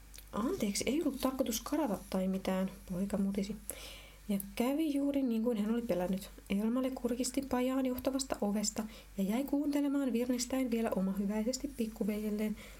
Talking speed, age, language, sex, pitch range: 130 wpm, 30-49, Finnish, female, 210-270 Hz